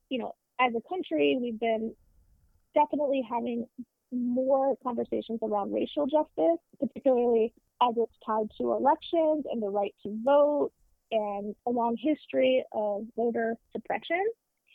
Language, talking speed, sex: English, 130 wpm, female